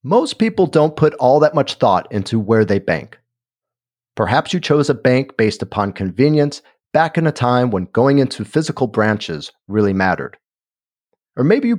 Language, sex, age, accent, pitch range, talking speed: English, male, 40-59, American, 110-145 Hz, 175 wpm